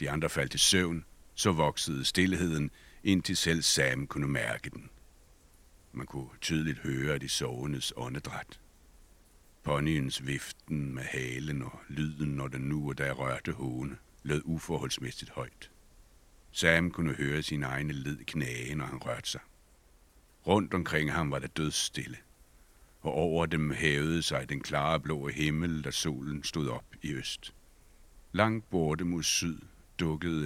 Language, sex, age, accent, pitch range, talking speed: Danish, male, 60-79, native, 70-80 Hz, 145 wpm